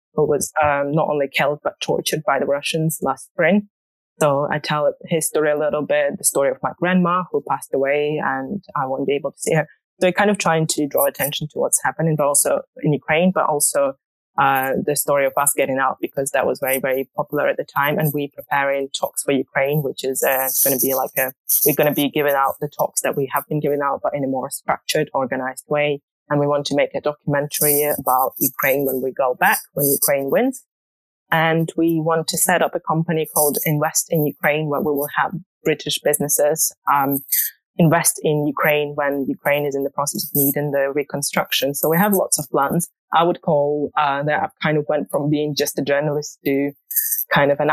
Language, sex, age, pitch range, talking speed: English, female, 20-39, 140-165 Hz, 225 wpm